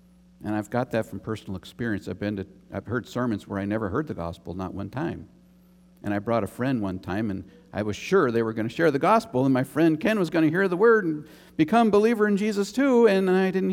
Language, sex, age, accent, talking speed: English, male, 50-69, American, 260 wpm